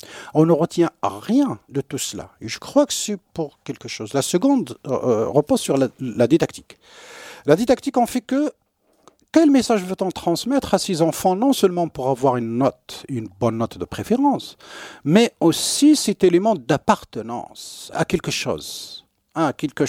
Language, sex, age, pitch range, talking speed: French, male, 50-69, 115-175 Hz, 170 wpm